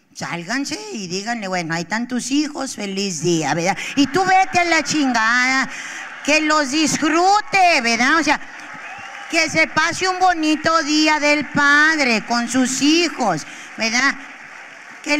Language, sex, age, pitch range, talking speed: Spanish, female, 30-49, 230-295 Hz, 140 wpm